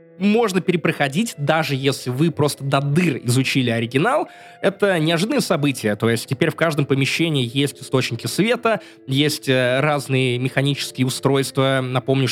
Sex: male